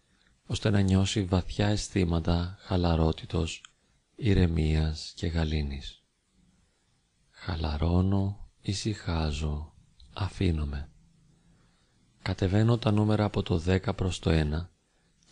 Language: Greek